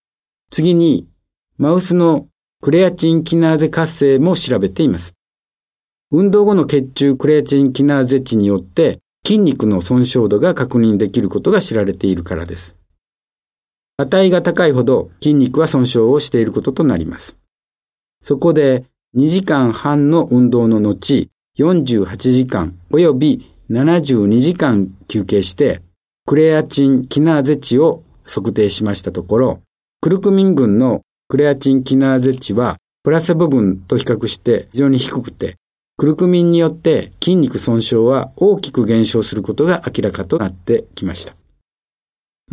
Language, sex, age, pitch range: Japanese, male, 50-69, 110-160 Hz